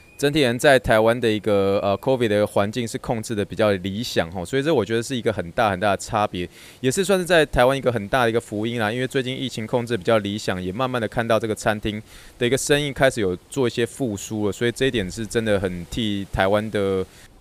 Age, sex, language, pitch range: 20-39, male, Chinese, 100-125 Hz